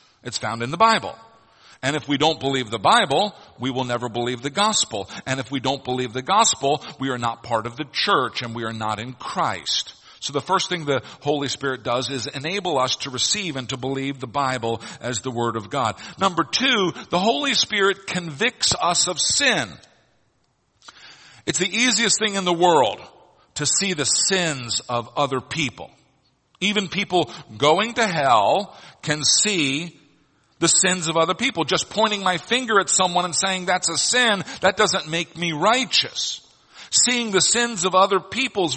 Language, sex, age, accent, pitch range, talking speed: English, male, 50-69, American, 130-185 Hz, 185 wpm